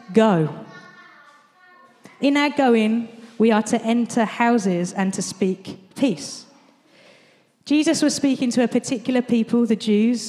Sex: female